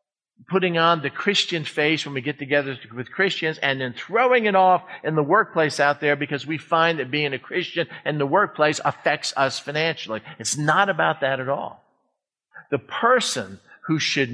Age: 50-69